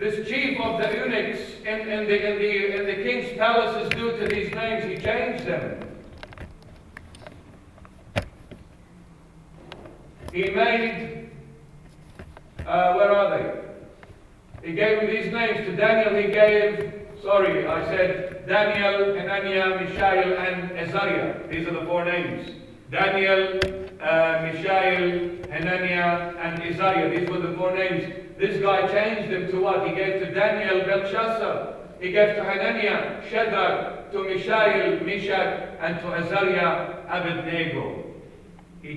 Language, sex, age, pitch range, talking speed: English, male, 50-69, 180-215 Hz, 120 wpm